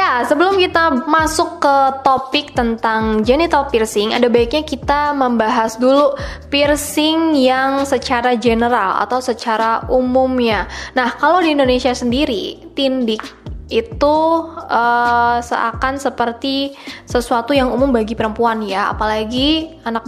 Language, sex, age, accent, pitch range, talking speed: Indonesian, female, 20-39, native, 225-280 Hz, 115 wpm